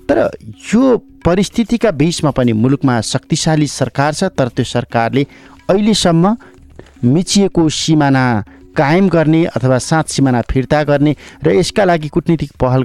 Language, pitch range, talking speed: English, 120-160 Hz, 125 wpm